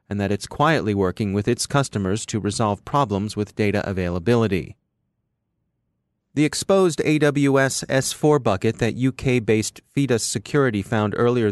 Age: 30-49